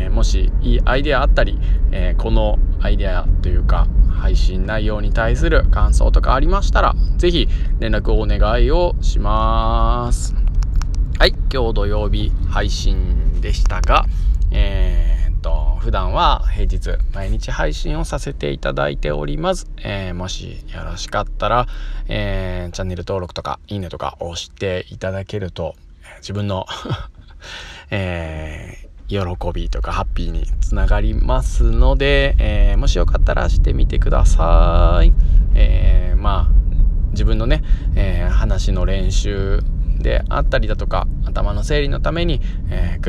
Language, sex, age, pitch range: Japanese, male, 20-39, 80-100 Hz